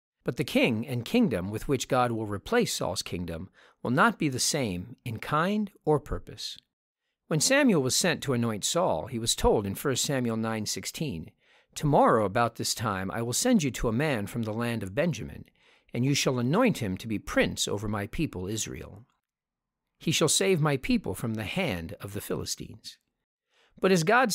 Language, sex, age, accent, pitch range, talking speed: English, male, 50-69, American, 105-155 Hz, 190 wpm